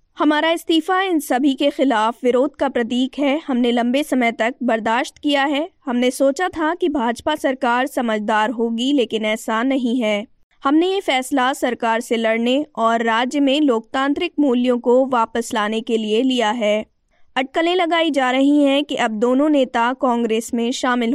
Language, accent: Hindi, native